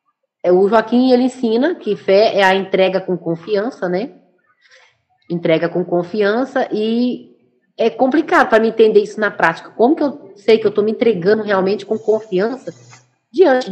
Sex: female